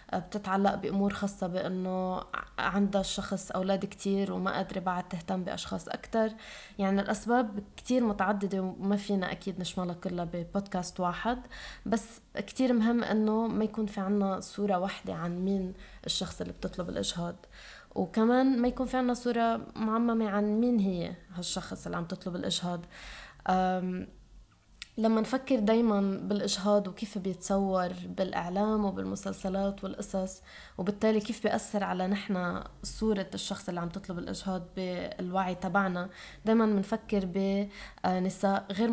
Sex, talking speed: female, 125 wpm